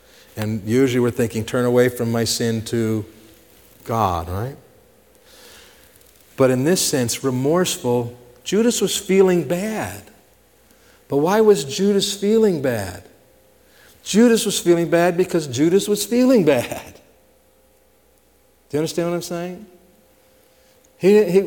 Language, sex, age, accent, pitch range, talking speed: English, male, 50-69, American, 135-175 Hz, 125 wpm